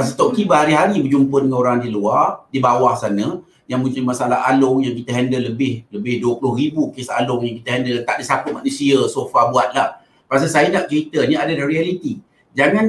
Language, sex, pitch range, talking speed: Malay, male, 165-245 Hz, 195 wpm